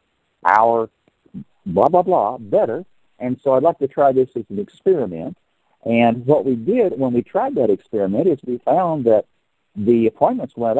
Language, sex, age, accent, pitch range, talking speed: English, male, 60-79, American, 115-155 Hz, 170 wpm